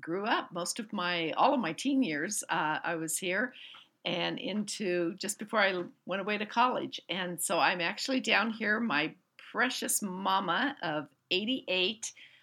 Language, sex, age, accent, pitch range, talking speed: English, female, 60-79, American, 160-190 Hz, 165 wpm